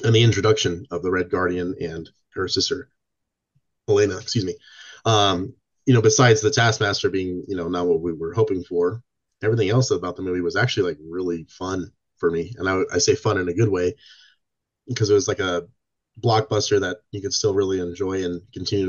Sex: male